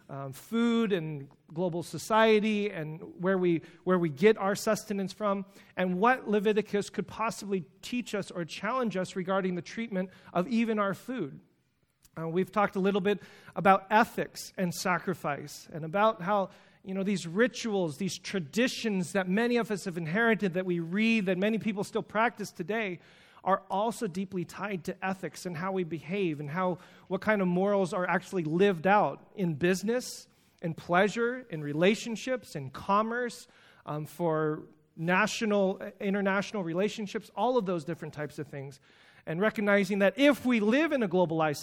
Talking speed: 165 wpm